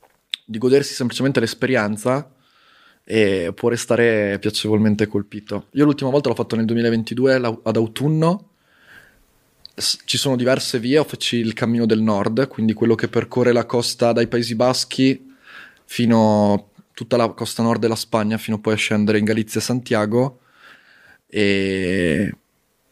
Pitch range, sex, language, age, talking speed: 110-130 Hz, male, Italian, 20-39, 150 wpm